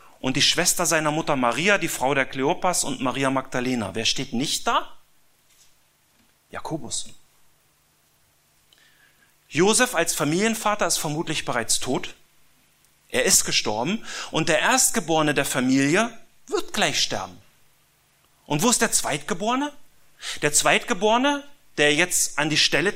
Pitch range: 135-200 Hz